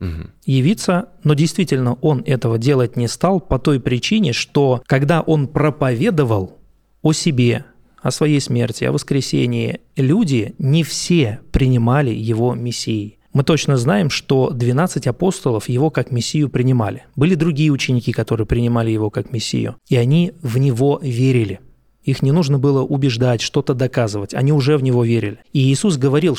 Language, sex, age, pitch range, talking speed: Russian, male, 20-39, 120-150 Hz, 150 wpm